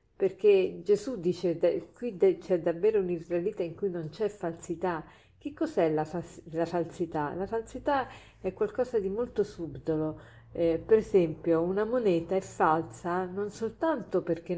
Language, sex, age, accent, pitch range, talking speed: Italian, female, 50-69, native, 170-220 Hz, 140 wpm